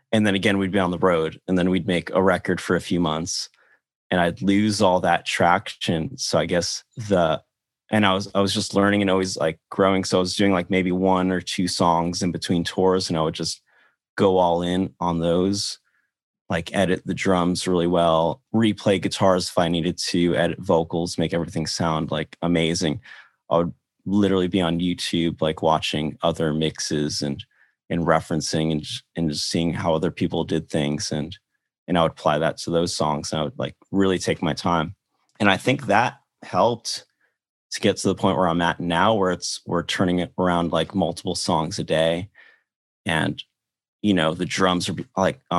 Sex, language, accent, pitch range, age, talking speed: male, English, American, 85-95 Hz, 30-49, 200 wpm